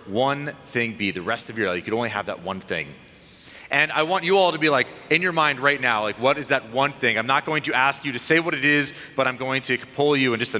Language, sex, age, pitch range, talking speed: English, male, 30-49, 130-160 Hz, 305 wpm